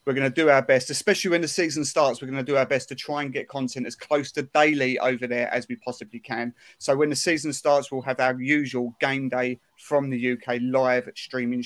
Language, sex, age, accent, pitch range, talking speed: English, male, 30-49, British, 125-140 Hz, 245 wpm